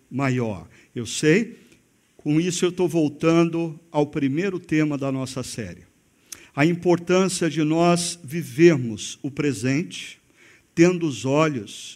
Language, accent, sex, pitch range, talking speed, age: Portuguese, Brazilian, male, 135-185 Hz, 120 wpm, 50-69